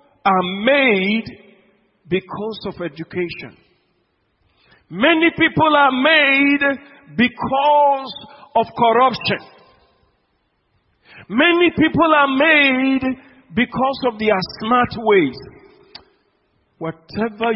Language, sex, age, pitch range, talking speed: English, male, 50-69, 160-260 Hz, 75 wpm